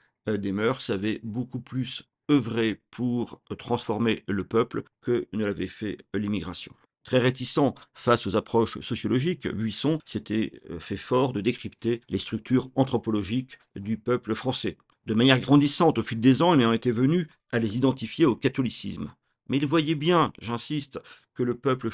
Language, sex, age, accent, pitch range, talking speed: French, male, 50-69, French, 110-135 Hz, 155 wpm